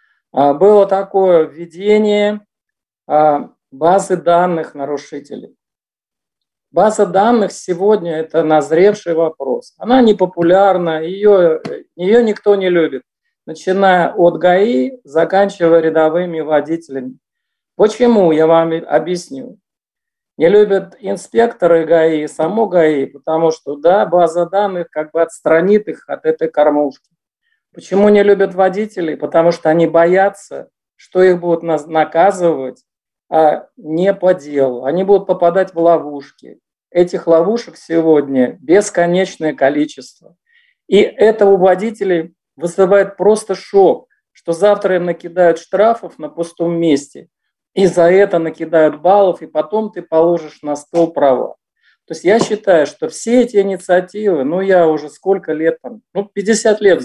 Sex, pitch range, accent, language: male, 160-200 Hz, native, Russian